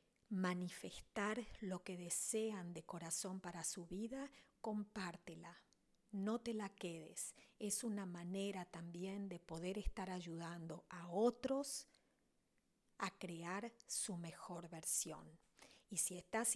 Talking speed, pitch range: 115 wpm, 175-215 Hz